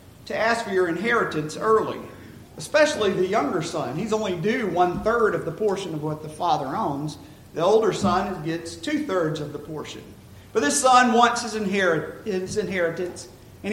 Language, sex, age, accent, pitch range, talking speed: English, male, 40-59, American, 180-235 Hz, 165 wpm